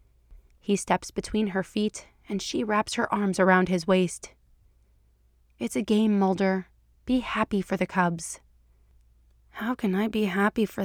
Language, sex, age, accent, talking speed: English, female, 30-49, American, 155 wpm